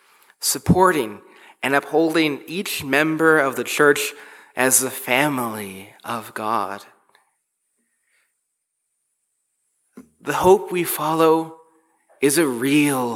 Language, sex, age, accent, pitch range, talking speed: English, male, 30-49, American, 120-155 Hz, 90 wpm